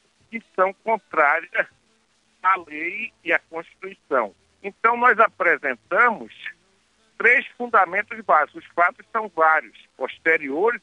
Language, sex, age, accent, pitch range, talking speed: Portuguese, male, 60-79, Brazilian, 180-255 Hz, 105 wpm